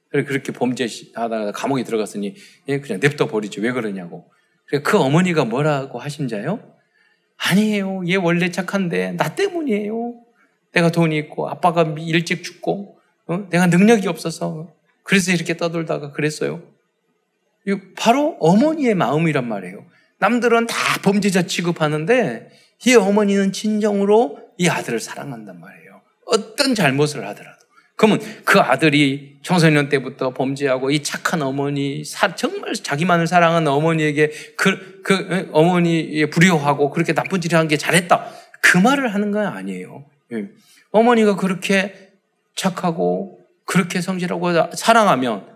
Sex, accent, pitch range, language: male, native, 150-215 Hz, Korean